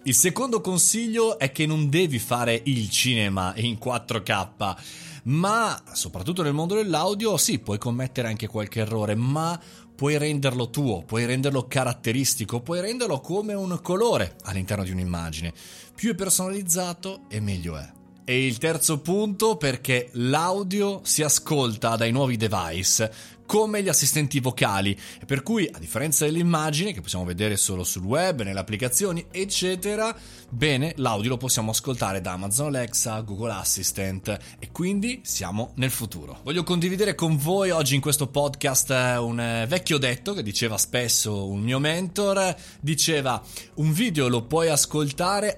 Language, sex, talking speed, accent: Italian, male, 145 wpm, native